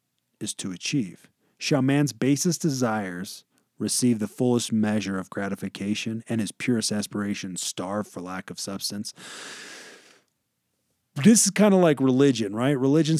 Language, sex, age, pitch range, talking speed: English, male, 30-49, 110-150 Hz, 135 wpm